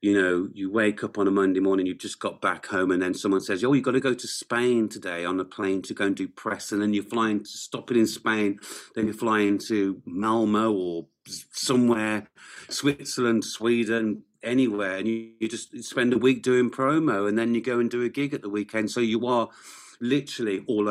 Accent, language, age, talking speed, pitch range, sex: British, English, 40-59, 225 wpm, 100-125 Hz, male